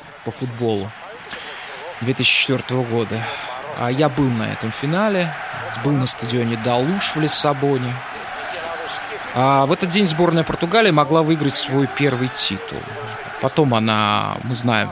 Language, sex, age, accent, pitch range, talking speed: Russian, male, 20-39, native, 120-155 Hz, 115 wpm